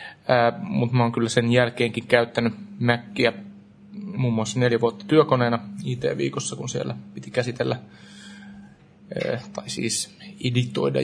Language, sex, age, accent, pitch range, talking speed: Finnish, male, 30-49, native, 115-150 Hz, 110 wpm